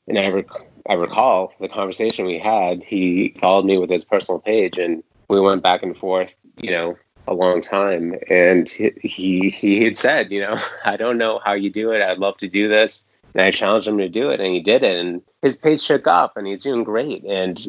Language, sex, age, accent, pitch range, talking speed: English, male, 30-49, American, 90-105 Hz, 230 wpm